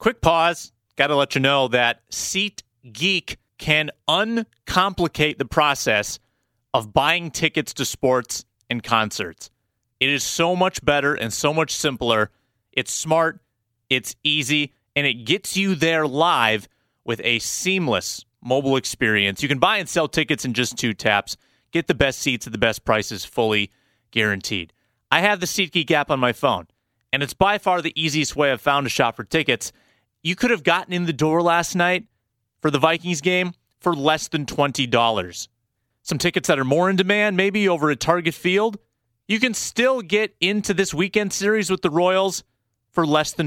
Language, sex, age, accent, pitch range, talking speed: English, male, 30-49, American, 120-170 Hz, 175 wpm